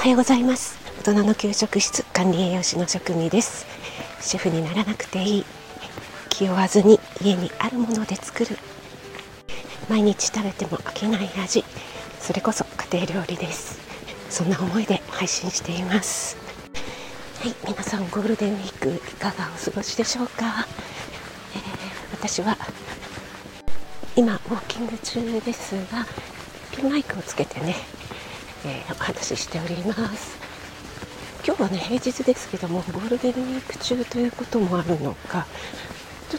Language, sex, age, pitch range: Japanese, female, 40-59, 185-235 Hz